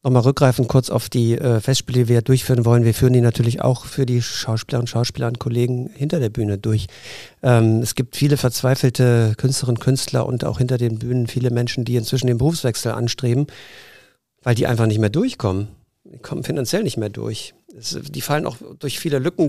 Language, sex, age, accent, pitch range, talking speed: German, male, 50-69, German, 120-140 Hz, 205 wpm